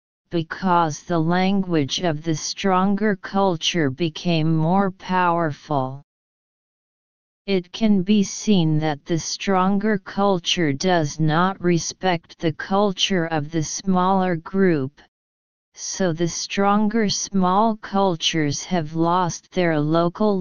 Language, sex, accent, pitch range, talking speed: English, female, American, 160-195 Hz, 105 wpm